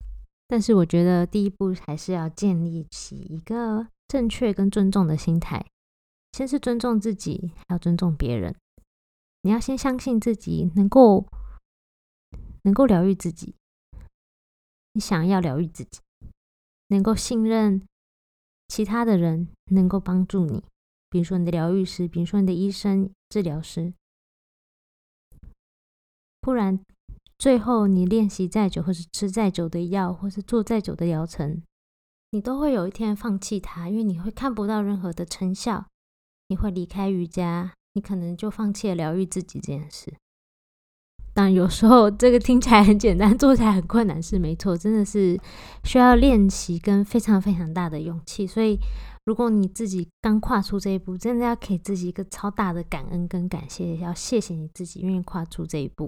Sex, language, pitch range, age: female, Chinese, 170-215 Hz, 20-39